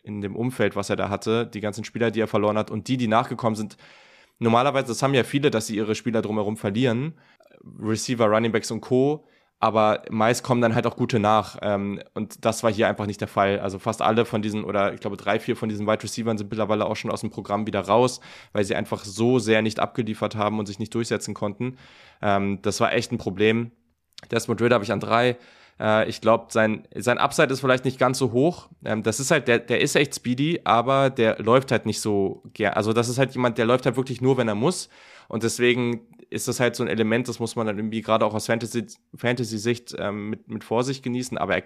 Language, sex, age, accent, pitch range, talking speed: German, male, 20-39, German, 110-125 Hz, 230 wpm